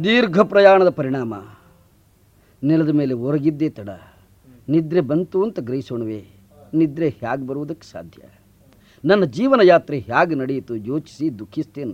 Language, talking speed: Kannada, 110 wpm